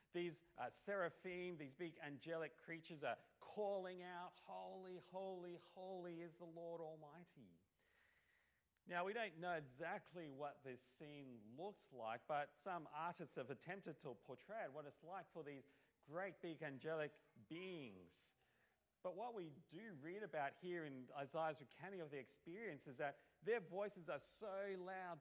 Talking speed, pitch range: 150 wpm, 145-185 Hz